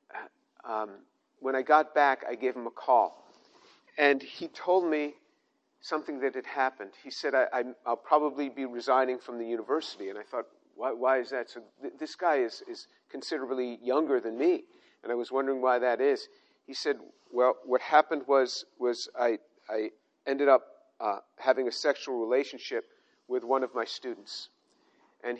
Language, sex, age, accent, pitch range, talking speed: English, male, 50-69, American, 130-155 Hz, 175 wpm